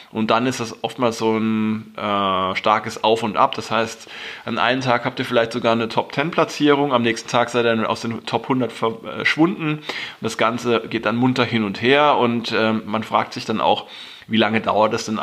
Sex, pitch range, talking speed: male, 110-130 Hz, 205 wpm